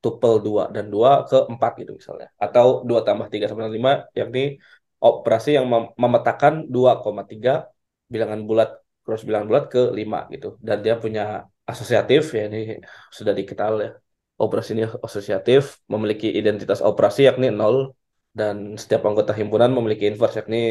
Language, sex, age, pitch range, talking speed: Indonesian, male, 20-39, 110-150 Hz, 145 wpm